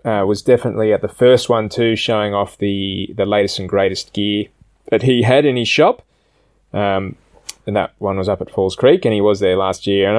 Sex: male